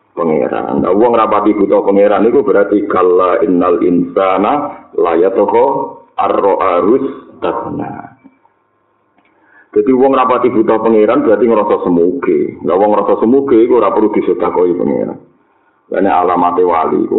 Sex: male